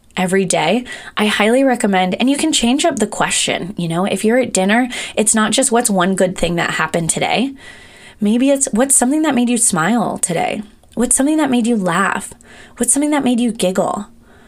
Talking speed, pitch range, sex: 205 wpm, 180-240 Hz, female